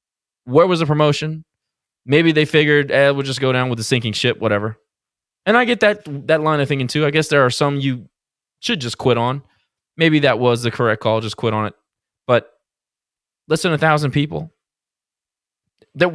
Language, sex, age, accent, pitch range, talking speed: English, male, 20-39, American, 115-160 Hz, 195 wpm